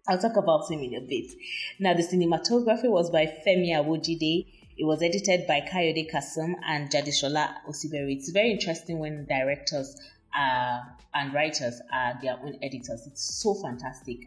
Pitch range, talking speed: 145-185 Hz, 155 wpm